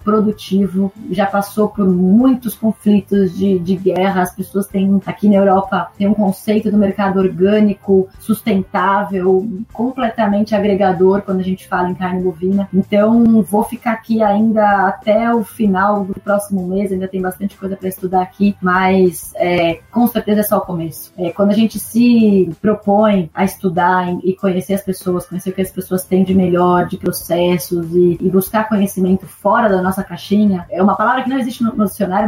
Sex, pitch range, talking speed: female, 185-210 Hz, 175 wpm